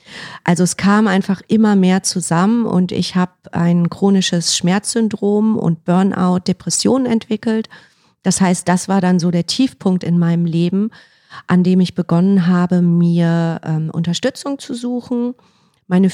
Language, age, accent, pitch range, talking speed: German, 40-59, German, 175-215 Hz, 145 wpm